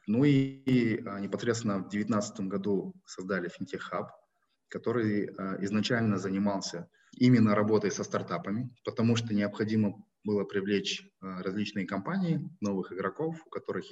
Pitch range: 95-120 Hz